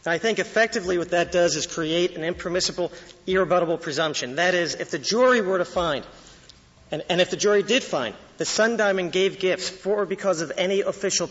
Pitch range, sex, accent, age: 160-195 Hz, male, American, 40-59